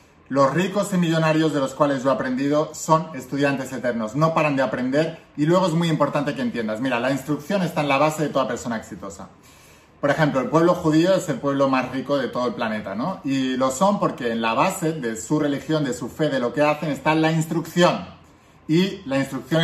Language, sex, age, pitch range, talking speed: Spanish, male, 30-49, 135-170 Hz, 225 wpm